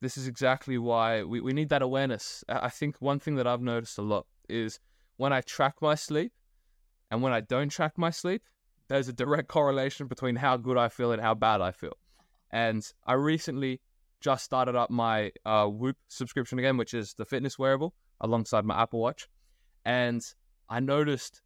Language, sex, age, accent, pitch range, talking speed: English, male, 20-39, Australian, 110-135 Hz, 190 wpm